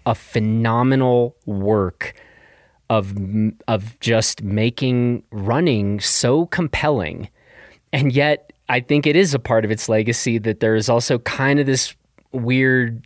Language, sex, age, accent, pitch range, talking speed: English, male, 30-49, American, 110-135 Hz, 135 wpm